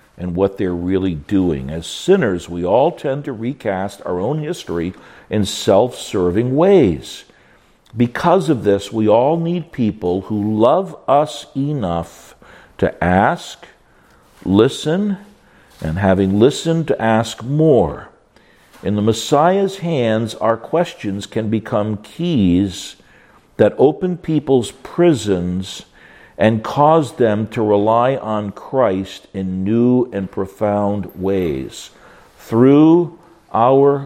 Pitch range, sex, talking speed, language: 100-150 Hz, male, 115 wpm, English